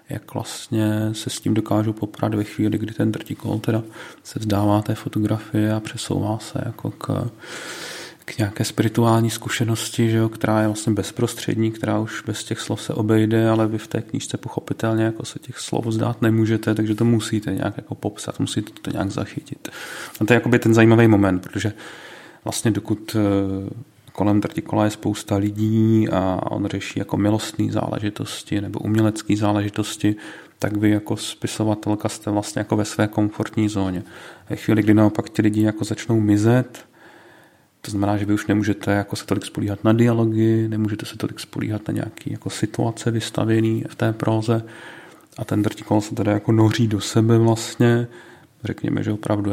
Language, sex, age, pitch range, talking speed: Czech, male, 40-59, 105-115 Hz, 170 wpm